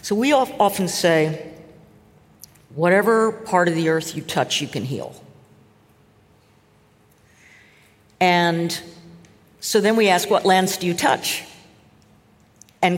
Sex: female